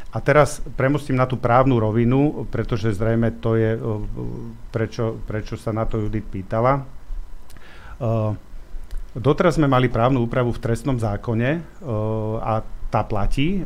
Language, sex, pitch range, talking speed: Slovak, male, 110-125 Hz, 140 wpm